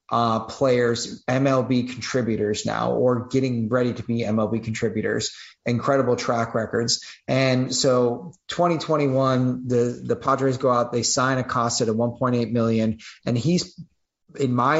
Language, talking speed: English, 135 wpm